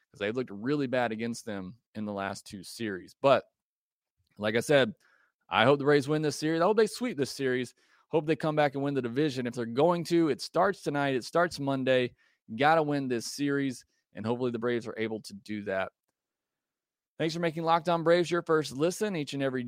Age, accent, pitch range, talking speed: 30-49, American, 110-145 Hz, 215 wpm